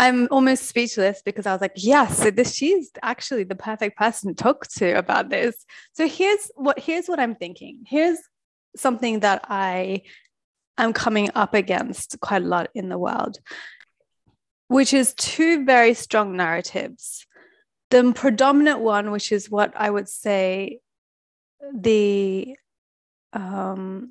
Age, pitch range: 30-49, 200-235 Hz